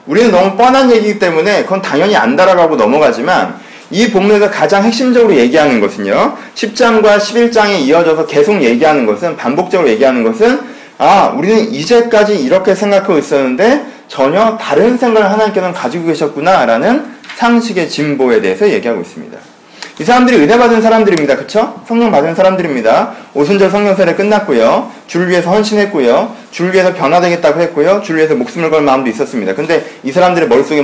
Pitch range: 170-230 Hz